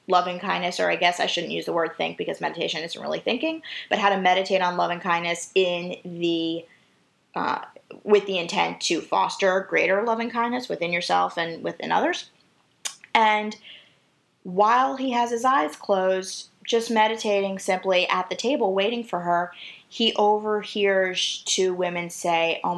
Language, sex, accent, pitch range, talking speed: English, female, American, 175-210 Hz, 160 wpm